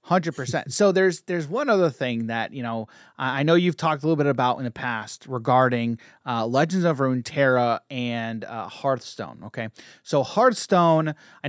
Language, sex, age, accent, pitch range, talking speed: English, male, 30-49, American, 130-180 Hz, 180 wpm